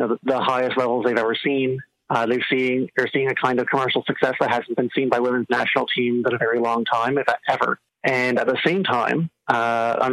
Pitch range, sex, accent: 120-135 Hz, male, American